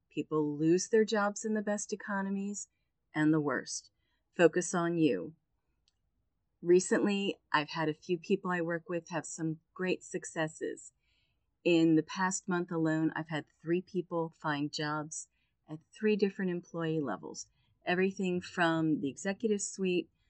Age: 40-59